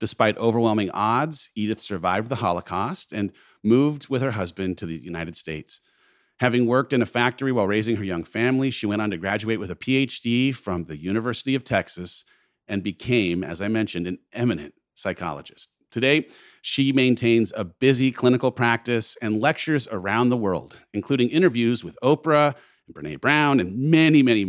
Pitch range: 105-135 Hz